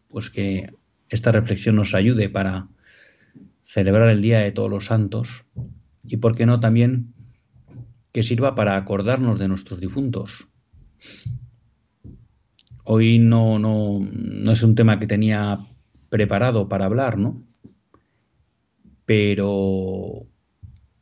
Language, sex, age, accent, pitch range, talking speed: Spanish, male, 40-59, Spanish, 100-120 Hz, 110 wpm